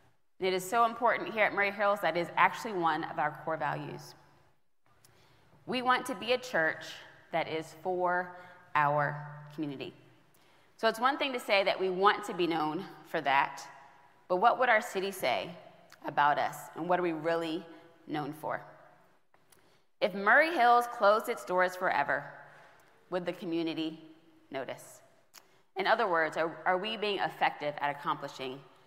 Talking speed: 160 wpm